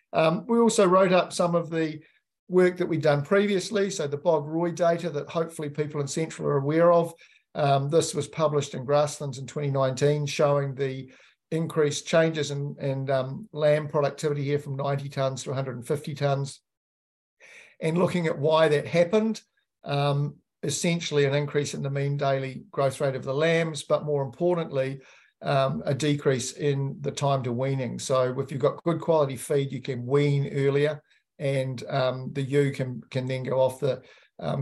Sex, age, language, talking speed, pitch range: male, 50-69, English, 175 wpm, 135-165 Hz